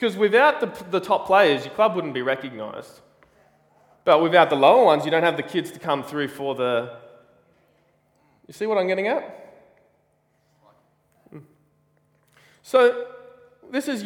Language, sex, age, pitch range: English, male, 20-39, 150-230 Hz